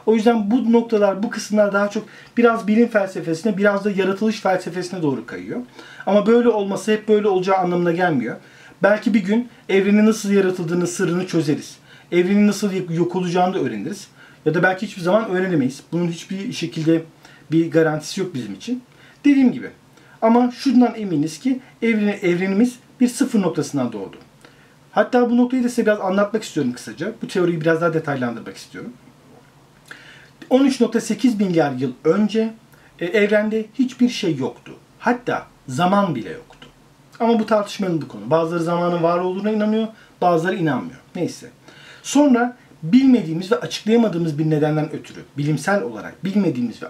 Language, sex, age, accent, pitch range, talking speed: Turkish, male, 40-59, native, 165-225 Hz, 145 wpm